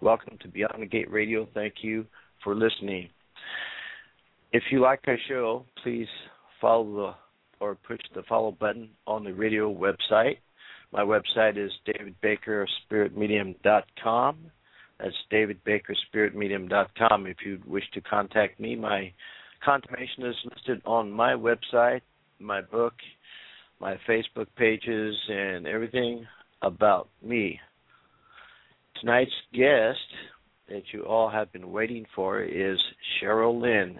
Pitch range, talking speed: 105-120 Hz, 115 wpm